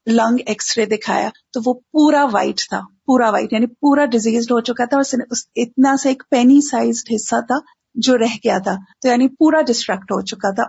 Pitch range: 225-265 Hz